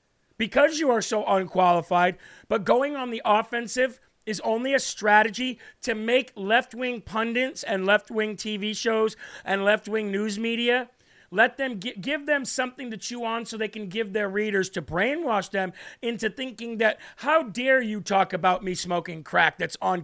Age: 40-59